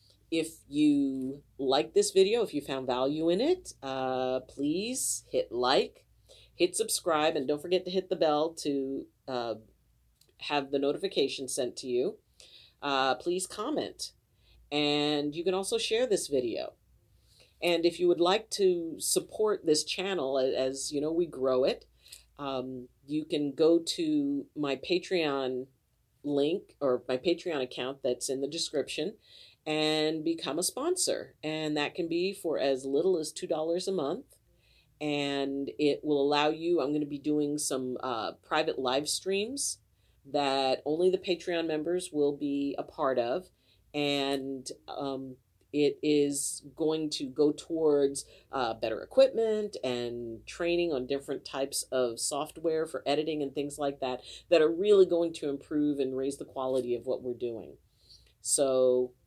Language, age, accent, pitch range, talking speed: English, 40-59, American, 135-170 Hz, 155 wpm